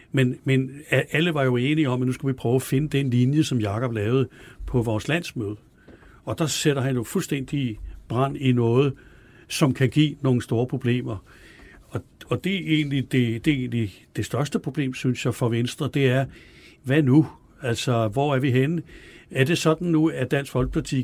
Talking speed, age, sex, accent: 195 wpm, 60-79, male, native